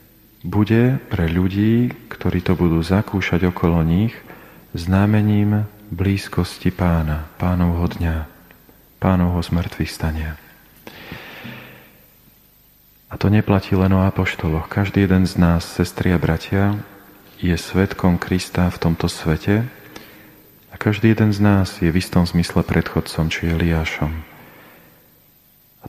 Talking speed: 115 wpm